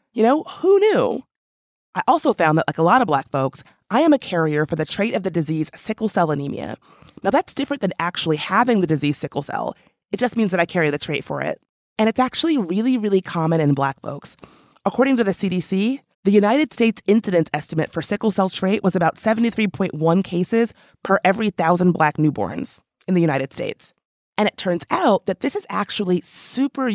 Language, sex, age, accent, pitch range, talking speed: English, female, 30-49, American, 160-225 Hz, 205 wpm